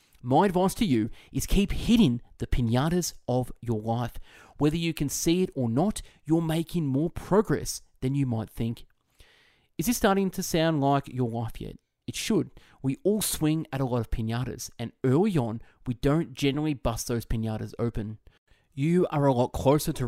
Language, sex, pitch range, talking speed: English, male, 115-155 Hz, 185 wpm